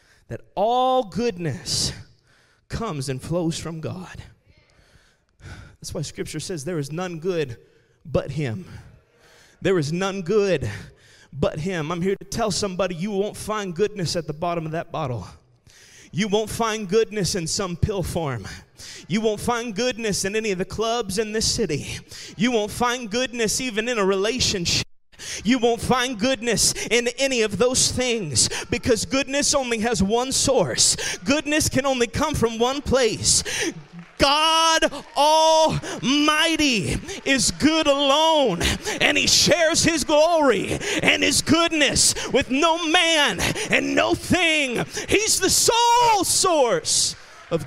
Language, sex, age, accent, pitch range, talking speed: English, male, 30-49, American, 185-285 Hz, 140 wpm